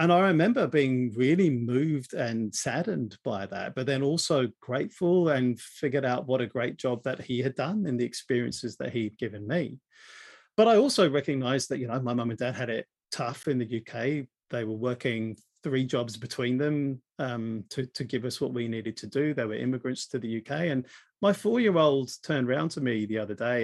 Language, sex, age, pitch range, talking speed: English, male, 40-59, 115-145 Hz, 210 wpm